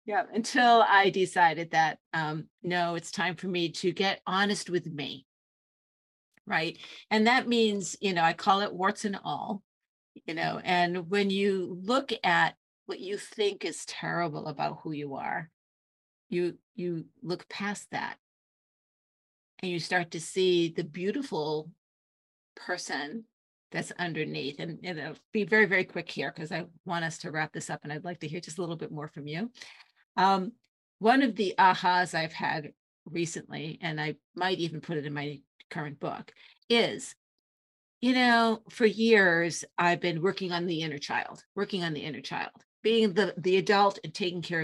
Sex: female